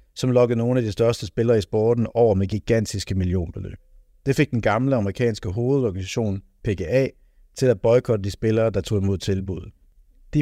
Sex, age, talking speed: male, 60-79, 175 wpm